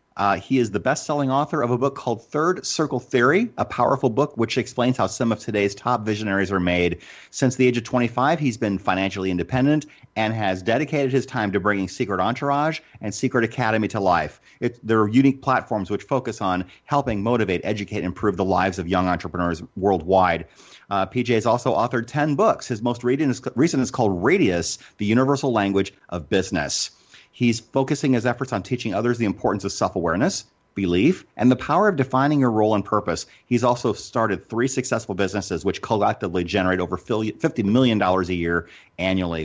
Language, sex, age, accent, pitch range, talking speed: English, male, 30-49, American, 95-125 Hz, 185 wpm